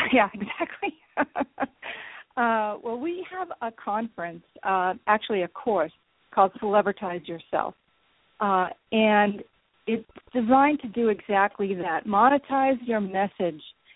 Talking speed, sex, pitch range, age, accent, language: 110 wpm, female, 190-230 Hz, 50-69, American, English